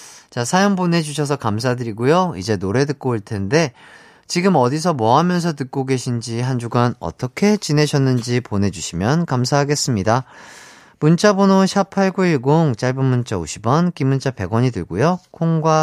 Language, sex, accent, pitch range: Korean, male, native, 115-170 Hz